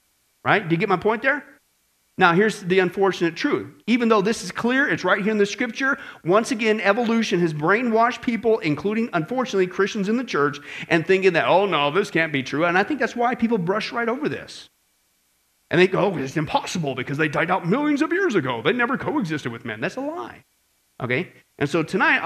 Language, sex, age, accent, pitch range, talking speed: English, male, 40-59, American, 150-220 Hz, 215 wpm